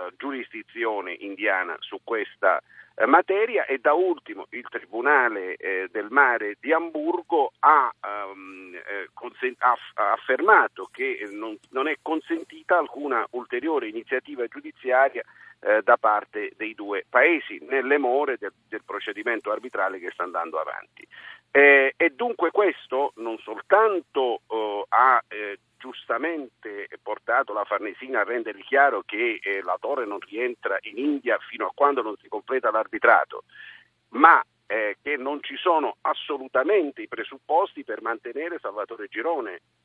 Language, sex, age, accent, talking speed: Italian, male, 50-69, native, 115 wpm